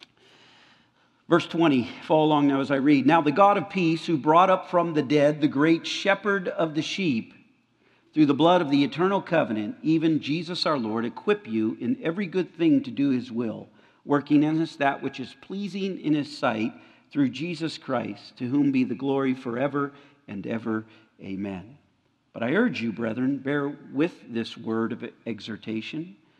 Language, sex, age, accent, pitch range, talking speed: English, male, 50-69, American, 115-160 Hz, 180 wpm